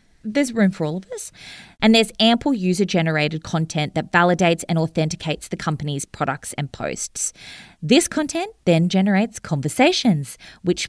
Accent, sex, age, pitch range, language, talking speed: Australian, female, 20-39, 165-225 Hz, English, 145 wpm